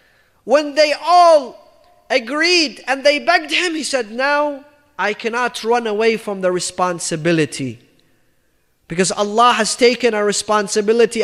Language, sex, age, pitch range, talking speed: English, male, 30-49, 190-310 Hz, 130 wpm